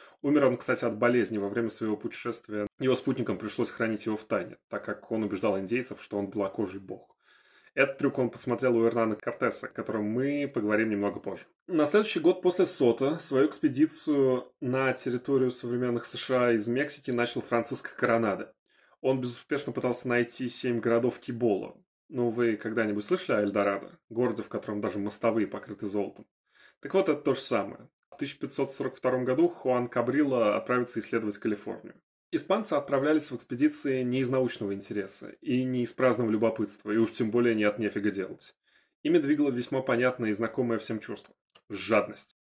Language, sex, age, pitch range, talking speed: Russian, male, 20-39, 110-130 Hz, 170 wpm